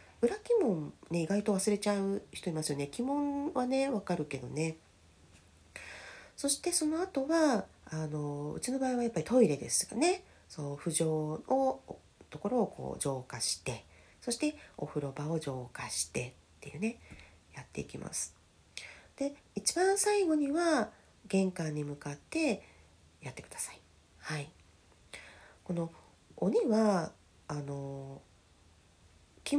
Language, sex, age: Japanese, female, 40-59